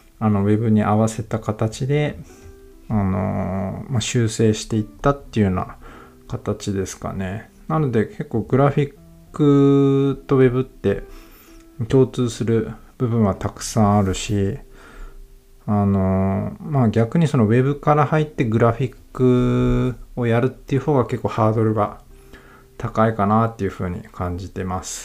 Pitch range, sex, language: 95-125 Hz, male, Japanese